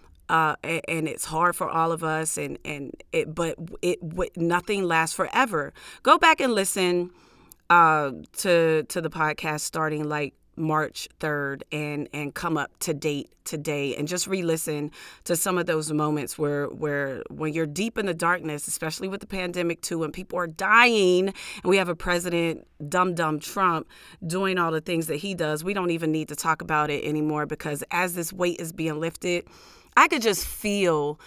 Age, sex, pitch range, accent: 30-49, female, 155-195 Hz, American